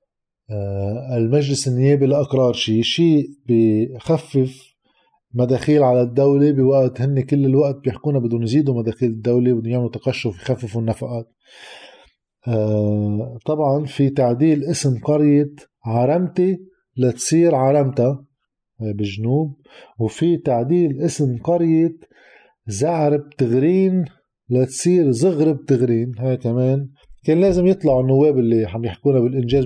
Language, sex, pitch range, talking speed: Arabic, male, 120-145 Hz, 105 wpm